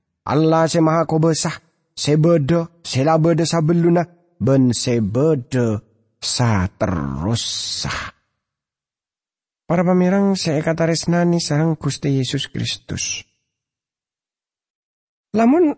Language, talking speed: English, 85 wpm